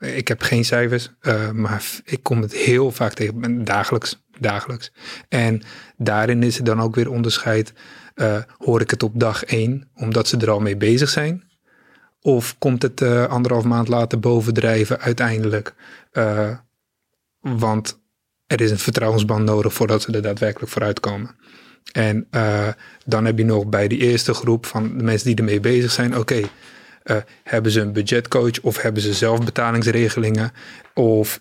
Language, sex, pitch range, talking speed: Dutch, male, 110-120 Hz, 165 wpm